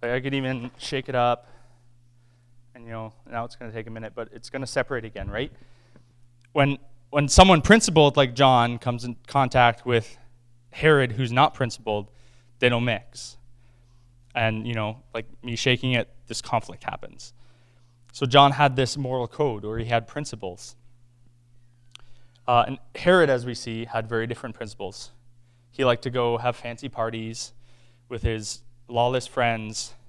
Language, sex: English, male